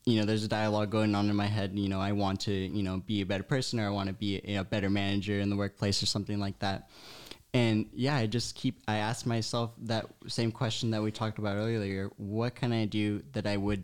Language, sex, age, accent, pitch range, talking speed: English, male, 10-29, American, 100-120 Hz, 265 wpm